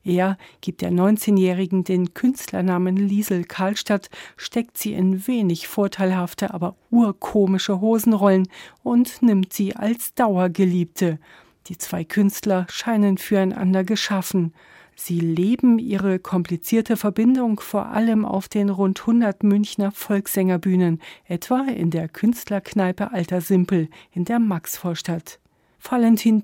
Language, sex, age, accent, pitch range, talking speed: German, female, 40-59, German, 180-215 Hz, 115 wpm